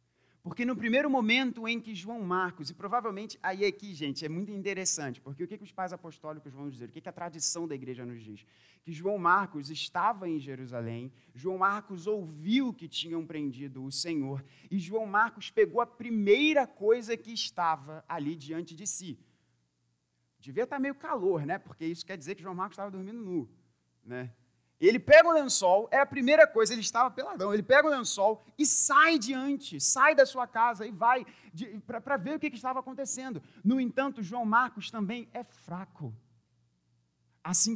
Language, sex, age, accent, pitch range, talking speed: Portuguese, male, 30-49, Brazilian, 140-235 Hz, 180 wpm